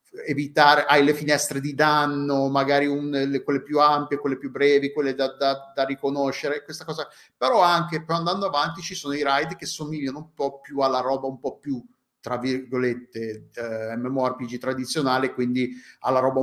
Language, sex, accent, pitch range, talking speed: Italian, male, native, 130-155 Hz, 175 wpm